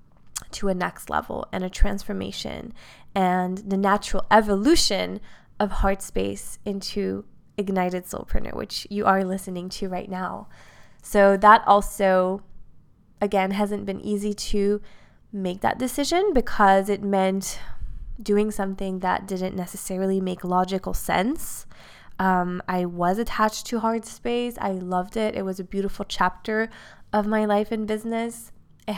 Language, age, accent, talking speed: English, 20-39, American, 140 wpm